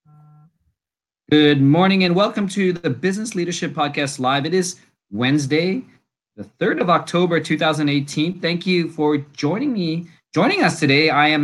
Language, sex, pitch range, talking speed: English, male, 135-170 Hz, 145 wpm